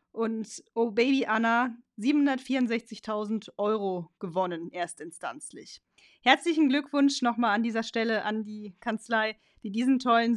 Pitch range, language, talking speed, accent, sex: 225-280 Hz, German, 115 wpm, German, female